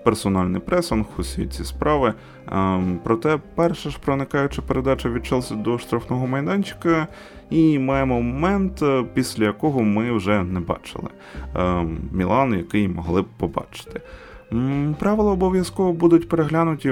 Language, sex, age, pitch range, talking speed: Ukrainian, male, 20-39, 90-125 Hz, 115 wpm